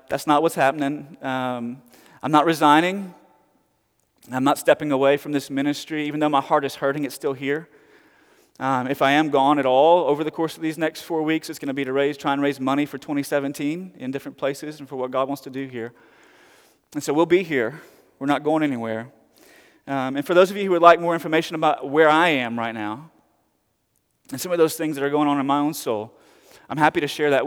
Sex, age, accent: male, 30-49, American